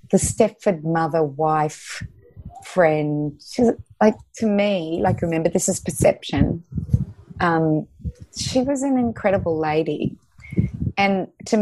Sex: female